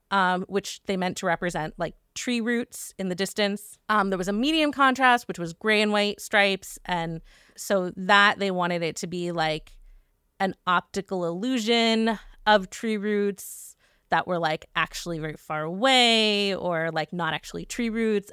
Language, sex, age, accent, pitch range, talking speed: English, female, 20-39, American, 180-225 Hz, 170 wpm